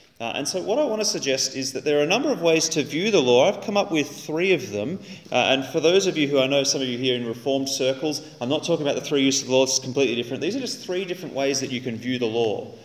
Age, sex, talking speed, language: 30-49, male, 320 wpm, English